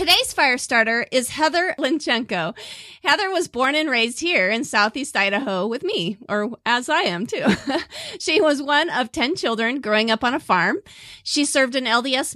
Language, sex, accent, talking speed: English, female, American, 180 wpm